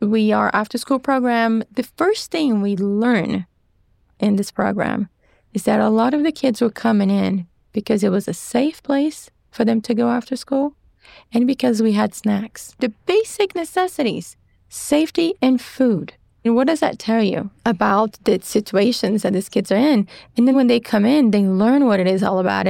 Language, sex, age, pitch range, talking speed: English, female, 30-49, 195-250 Hz, 195 wpm